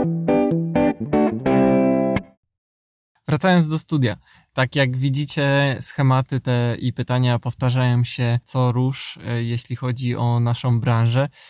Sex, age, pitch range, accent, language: male, 20-39, 125-140 Hz, native, Polish